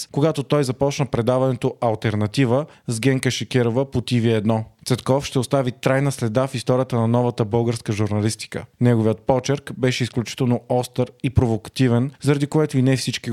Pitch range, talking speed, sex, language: 115-135 Hz, 155 wpm, male, Bulgarian